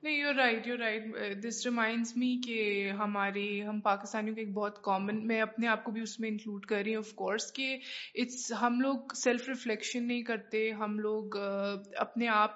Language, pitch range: Urdu, 215-235 Hz